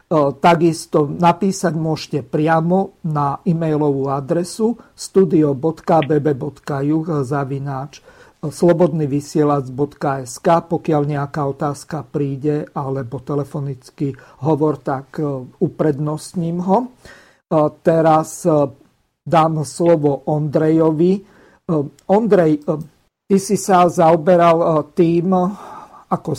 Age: 50-69